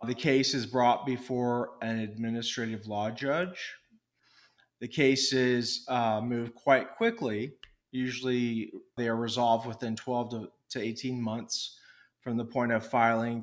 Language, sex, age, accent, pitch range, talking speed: English, male, 30-49, American, 115-135 Hz, 130 wpm